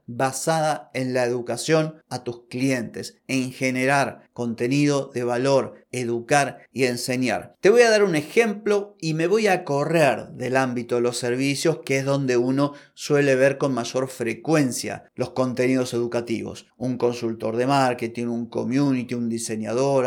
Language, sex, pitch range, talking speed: Spanish, male, 120-150 Hz, 155 wpm